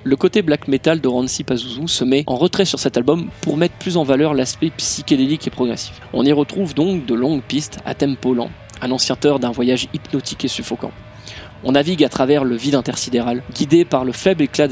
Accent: French